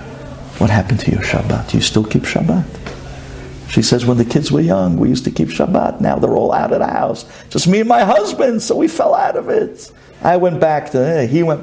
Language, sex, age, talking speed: English, male, 60-79, 235 wpm